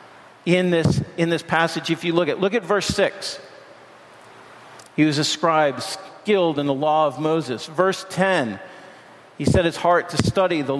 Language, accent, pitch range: English, American, 155-190 Hz